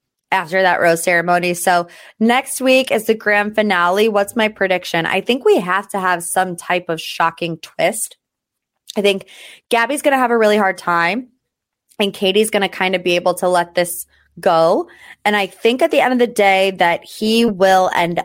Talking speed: 195 wpm